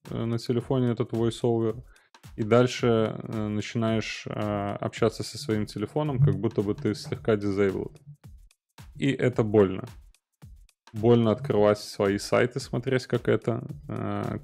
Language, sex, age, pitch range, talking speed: Russian, male, 20-39, 105-125 Hz, 125 wpm